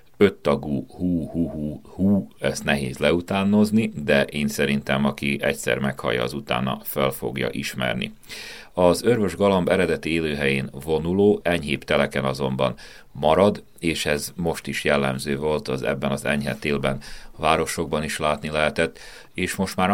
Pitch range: 70-80 Hz